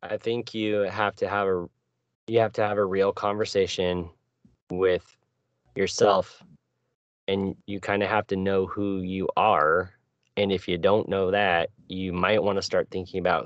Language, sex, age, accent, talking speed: English, male, 20-39, American, 175 wpm